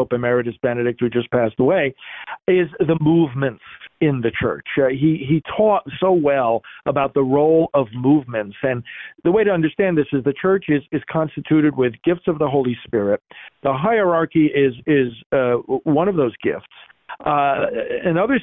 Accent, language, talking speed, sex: American, English, 175 wpm, male